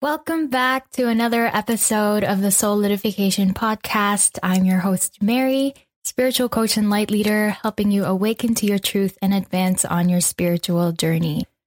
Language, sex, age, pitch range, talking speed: English, female, 10-29, 185-215 Hz, 160 wpm